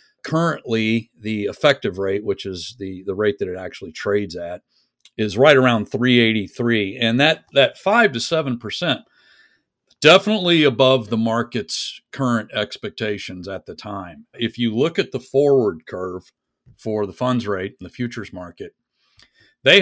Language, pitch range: English, 105-130 Hz